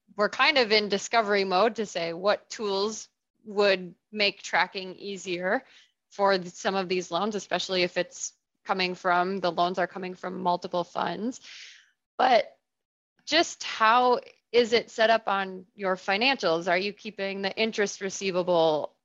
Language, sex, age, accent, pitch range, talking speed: English, female, 20-39, American, 185-215 Hz, 150 wpm